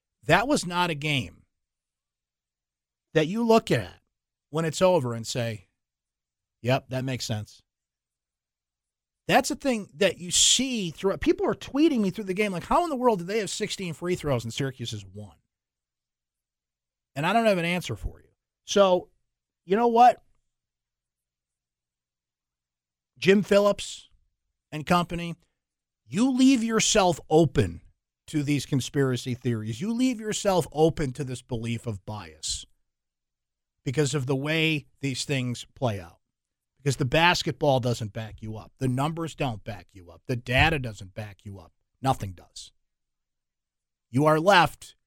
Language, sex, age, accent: English, male, 50-69, American